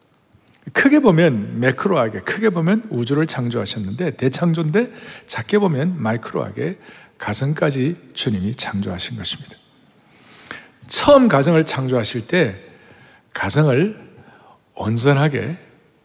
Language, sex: Korean, male